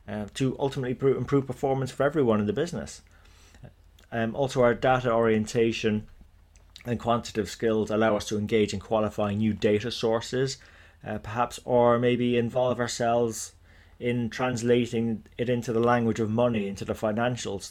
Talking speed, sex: 150 wpm, male